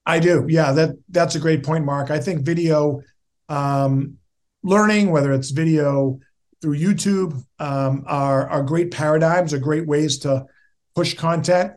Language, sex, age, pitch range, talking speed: English, male, 50-69, 145-170 Hz, 150 wpm